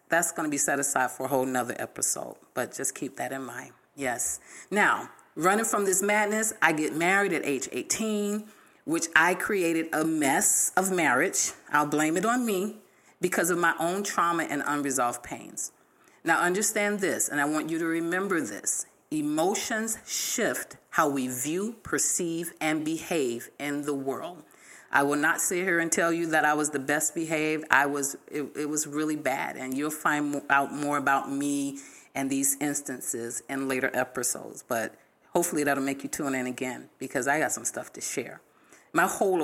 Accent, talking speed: American, 185 wpm